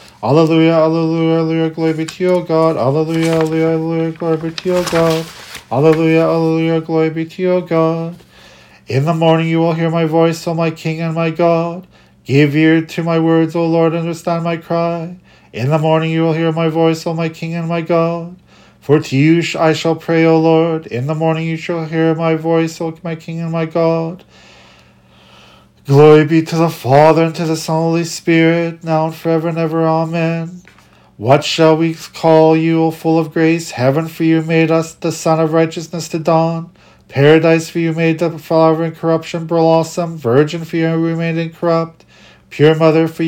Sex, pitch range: male, 160-165 Hz